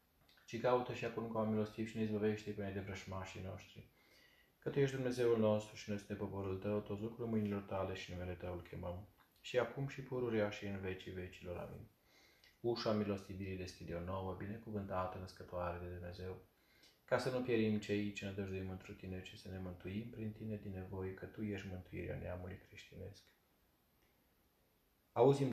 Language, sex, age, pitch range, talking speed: Romanian, male, 20-39, 95-110 Hz, 180 wpm